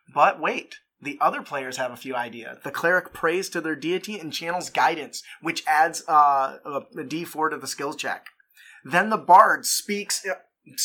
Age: 20-39